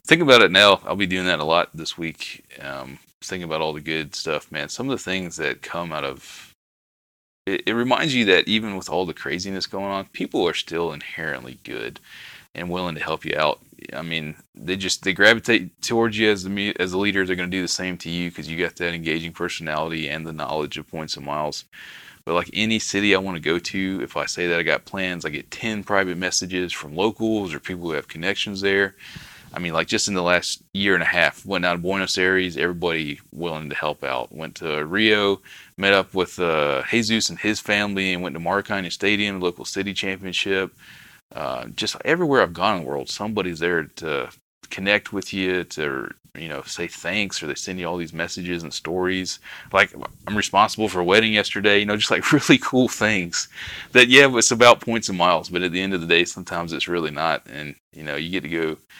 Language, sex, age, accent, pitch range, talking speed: English, male, 20-39, American, 85-100 Hz, 225 wpm